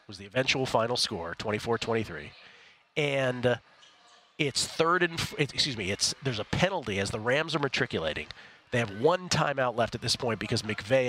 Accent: American